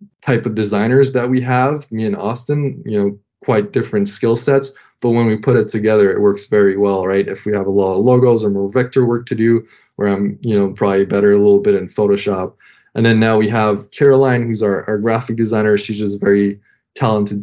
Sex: male